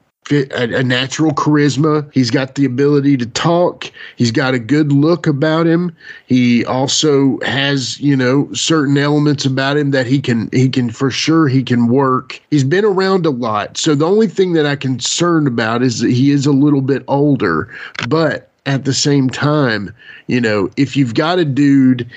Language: English